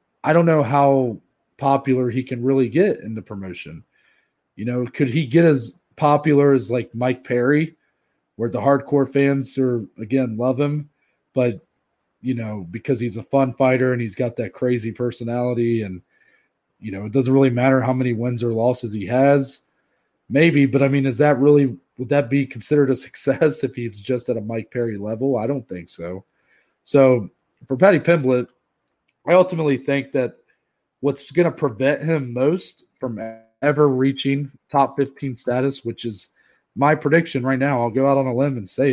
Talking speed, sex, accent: 180 wpm, male, American